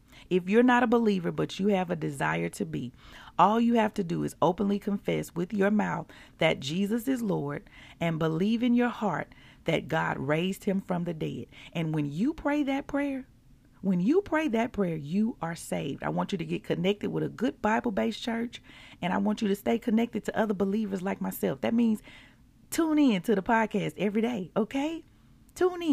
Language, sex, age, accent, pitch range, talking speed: English, female, 40-59, American, 165-240 Hz, 205 wpm